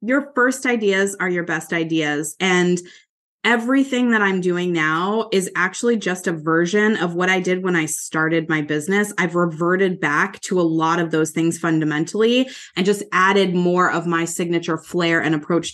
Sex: female